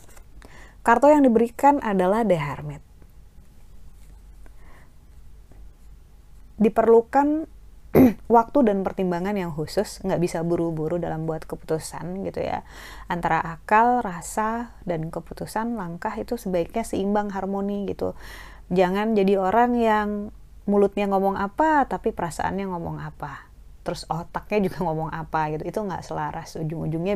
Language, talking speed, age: Indonesian, 115 wpm, 30-49